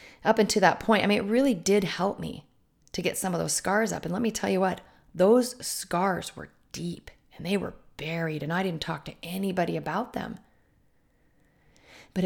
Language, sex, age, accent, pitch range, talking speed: English, female, 40-59, American, 165-215 Hz, 200 wpm